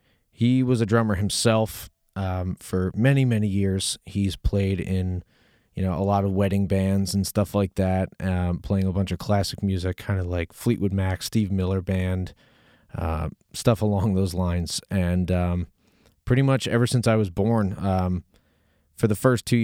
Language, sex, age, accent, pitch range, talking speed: English, male, 30-49, American, 90-100 Hz, 175 wpm